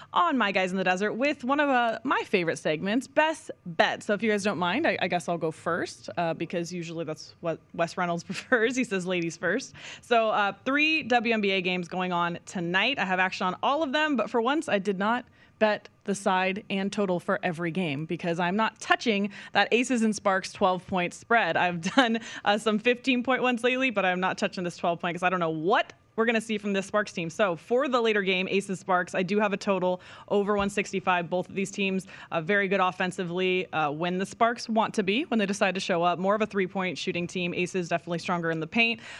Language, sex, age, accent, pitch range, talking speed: English, female, 20-39, American, 175-225 Hz, 235 wpm